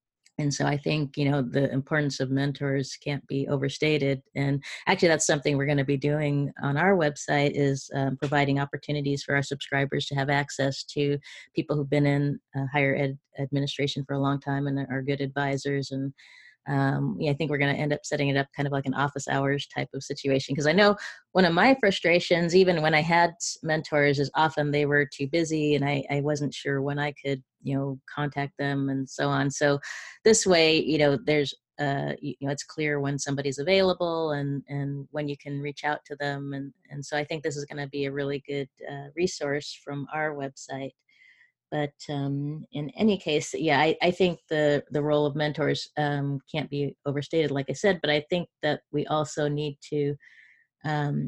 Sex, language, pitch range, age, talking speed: female, English, 140-150 Hz, 30-49, 205 wpm